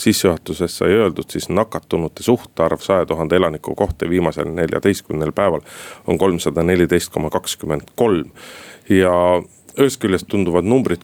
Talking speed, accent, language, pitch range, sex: 105 wpm, native, Finnish, 85-100 Hz, male